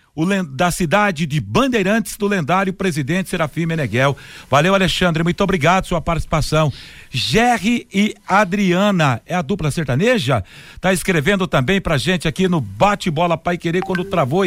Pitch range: 170-200 Hz